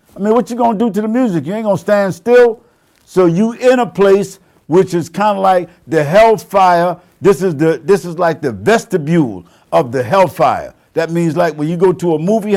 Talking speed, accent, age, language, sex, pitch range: 230 wpm, American, 60-79, English, male, 140-195 Hz